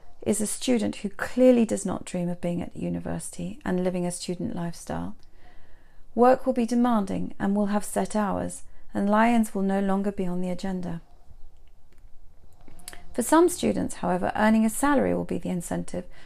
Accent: British